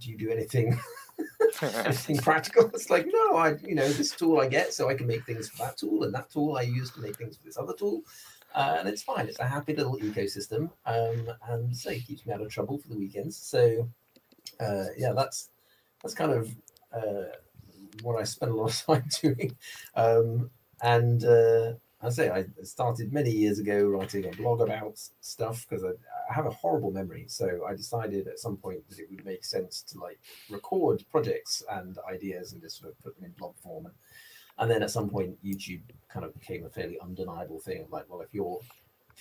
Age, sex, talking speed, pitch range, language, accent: 30-49, male, 215 wpm, 105-150 Hz, English, British